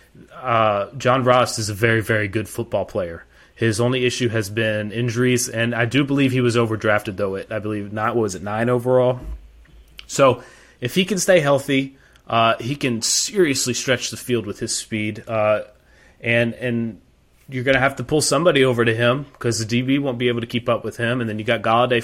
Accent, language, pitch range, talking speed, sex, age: American, English, 110-125 Hz, 210 wpm, male, 20-39